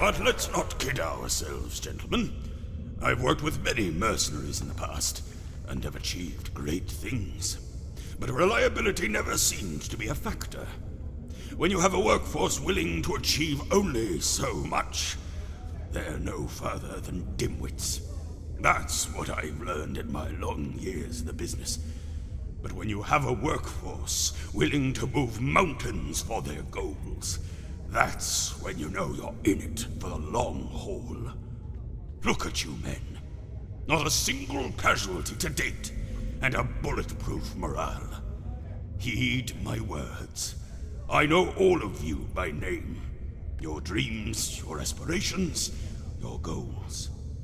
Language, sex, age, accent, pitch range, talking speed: English, male, 60-79, British, 75-95 Hz, 135 wpm